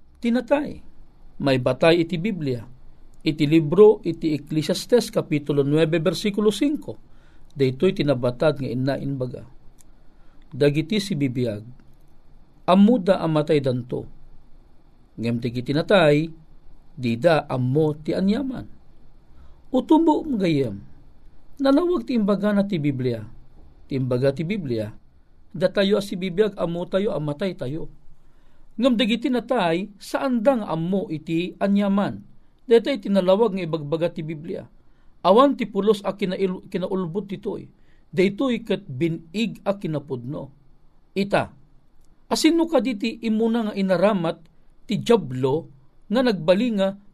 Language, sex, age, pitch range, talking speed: Filipino, male, 50-69, 150-215 Hz, 110 wpm